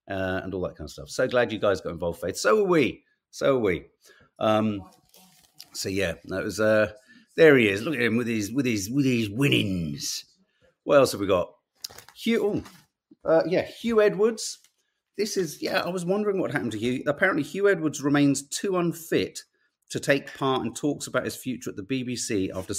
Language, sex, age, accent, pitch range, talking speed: English, male, 40-59, British, 100-145 Hz, 205 wpm